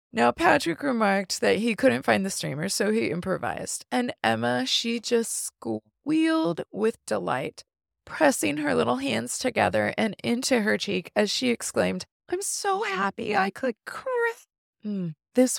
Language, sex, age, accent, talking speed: English, female, 20-39, American, 140 wpm